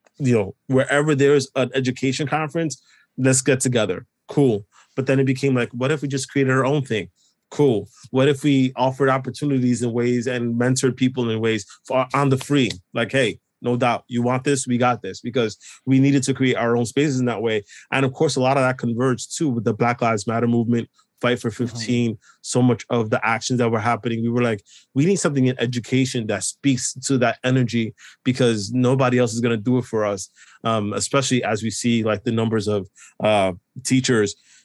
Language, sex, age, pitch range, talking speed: English, male, 20-39, 115-135 Hz, 210 wpm